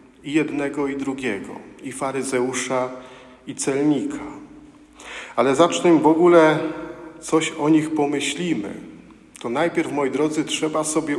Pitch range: 120-155 Hz